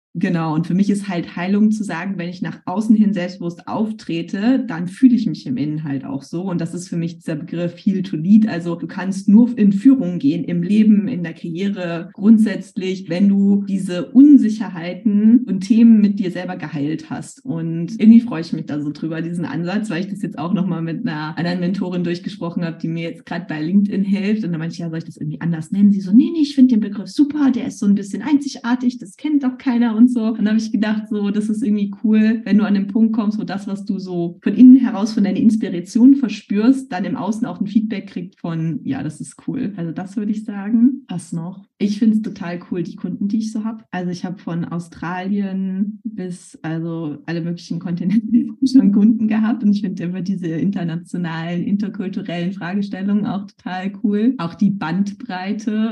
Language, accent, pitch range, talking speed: German, German, 175-225 Hz, 220 wpm